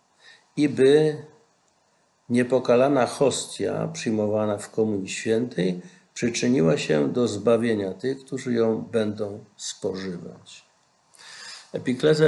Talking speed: 90 wpm